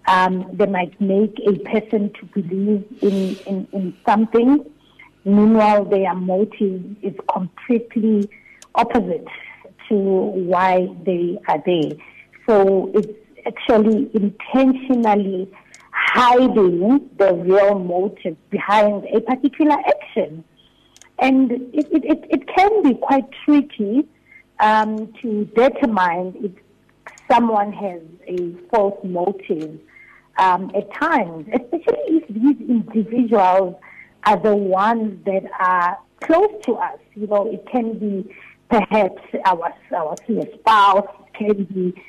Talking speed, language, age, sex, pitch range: 110 wpm, English, 50-69, female, 190-235 Hz